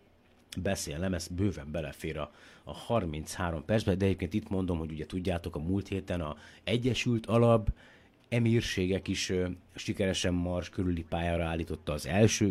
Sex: male